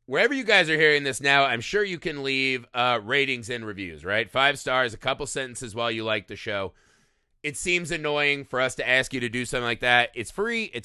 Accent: American